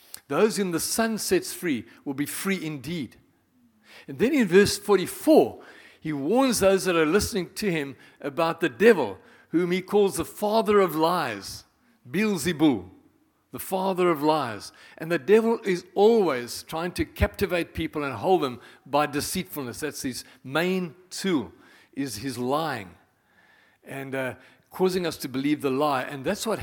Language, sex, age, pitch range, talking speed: Danish, male, 60-79, 145-190 Hz, 160 wpm